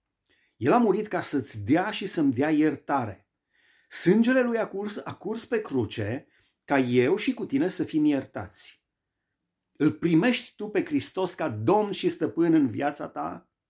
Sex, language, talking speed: male, Romanian, 160 wpm